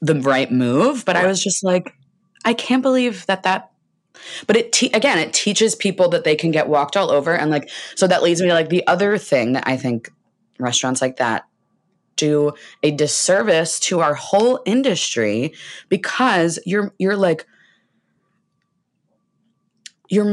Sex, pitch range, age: female, 140-190 Hz, 20-39